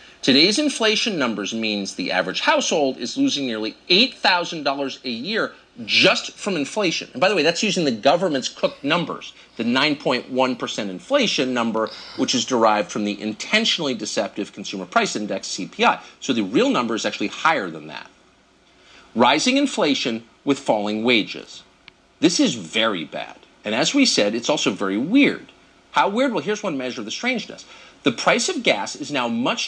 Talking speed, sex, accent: 170 wpm, male, American